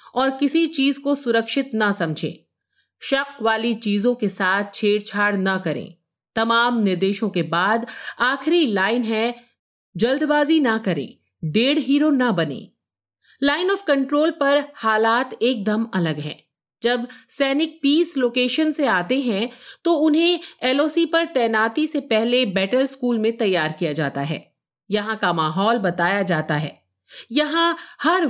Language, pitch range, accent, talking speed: Hindi, 205-280 Hz, native, 140 wpm